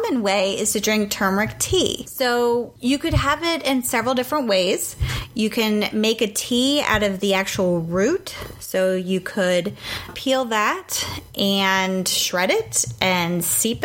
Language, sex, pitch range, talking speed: English, female, 190-240 Hz, 150 wpm